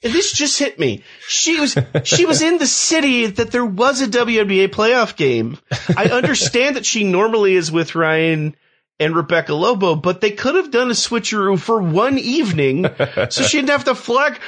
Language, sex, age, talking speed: English, male, 30-49, 190 wpm